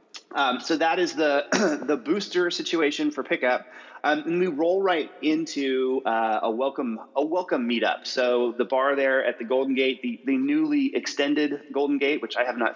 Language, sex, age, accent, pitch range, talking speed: English, male, 30-49, American, 120-150 Hz, 190 wpm